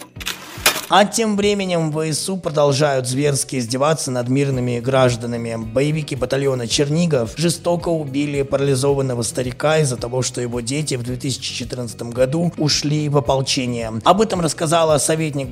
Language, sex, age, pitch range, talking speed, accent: Russian, male, 20-39, 125-150 Hz, 130 wpm, native